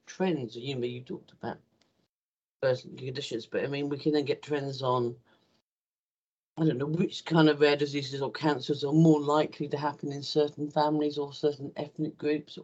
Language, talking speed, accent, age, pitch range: English, 180 wpm, British, 50-69, 120-155 Hz